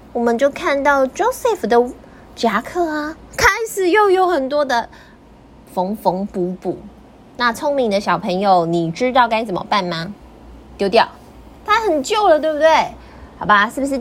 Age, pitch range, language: 20-39, 200-285 Hz, Chinese